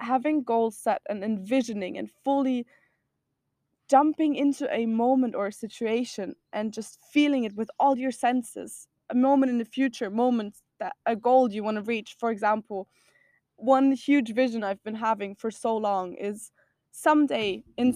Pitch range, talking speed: 220-265 Hz, 160 wpm